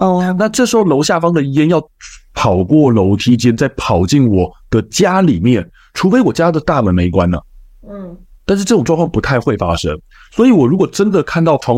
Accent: native